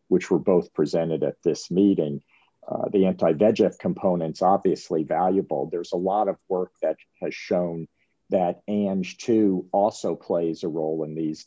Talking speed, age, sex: 150 wpm, 50-69, male